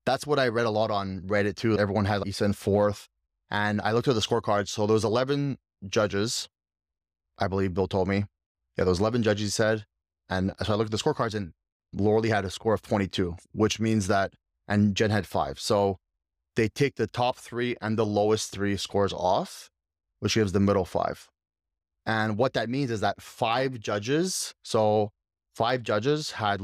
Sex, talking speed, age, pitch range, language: male, 195 wpm, 20-39, 90-115 Hz, English